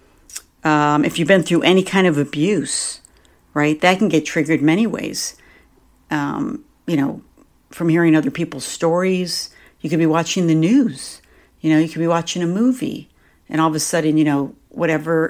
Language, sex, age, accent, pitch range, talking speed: English, female, 60-79, American, 150-180 Hz, 180 wpm